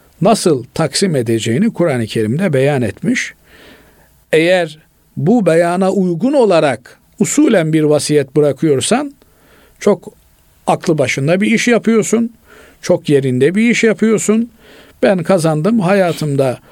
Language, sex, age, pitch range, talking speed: Turkish, male, 50-69, 140-205 Hz, 110 wpm